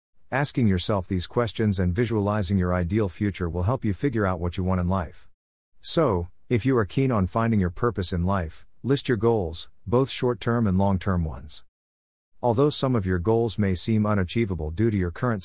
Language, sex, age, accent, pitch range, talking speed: English, male, 50-69, American, 90-115 Hz, 200 wpm